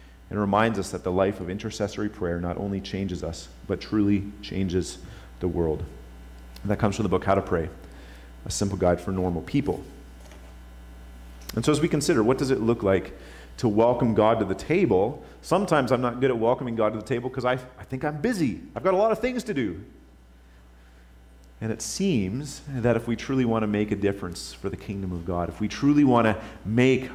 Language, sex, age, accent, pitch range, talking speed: English, male, 30-49, American, 80-115 Hz, 210 wpm